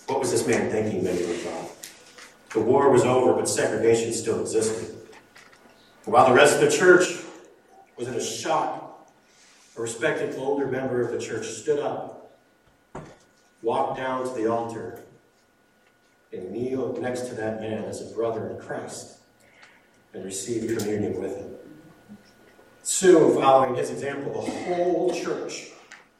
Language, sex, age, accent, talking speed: English, male, 50-69, American, 150 wpm